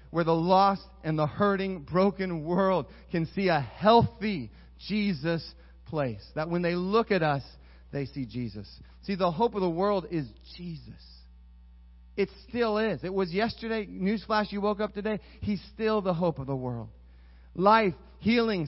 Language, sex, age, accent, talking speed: English, male, 40-59, American, 165 wpm